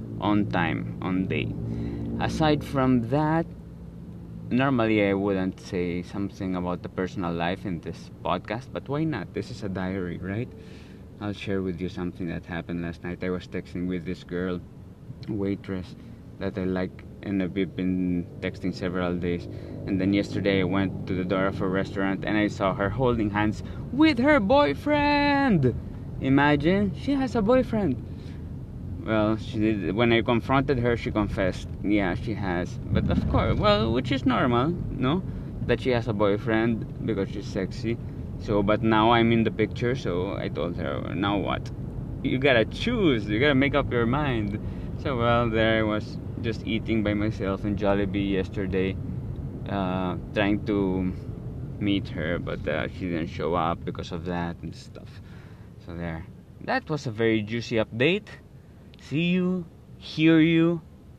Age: 20-39